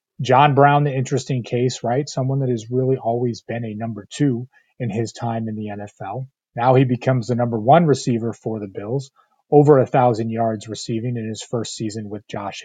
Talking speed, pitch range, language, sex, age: 200 wpm, 115-135 Hz, English, male, 30-49